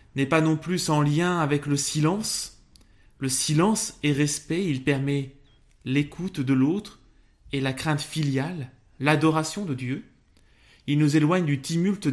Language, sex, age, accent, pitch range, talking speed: French, male, 20-39, French, 130-160 Hz, 150 wpm